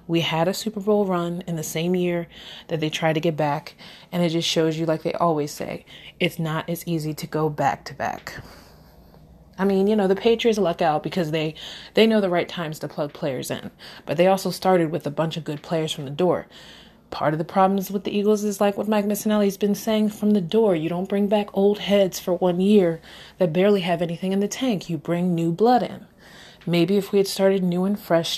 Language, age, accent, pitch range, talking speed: English, 30-49, American, 170-205 Hz, 235 wpm